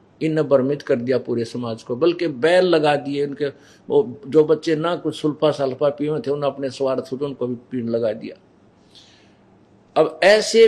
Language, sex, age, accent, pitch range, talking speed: Hindi, male, 50-69, native, 125-165 Hz, 180 wpm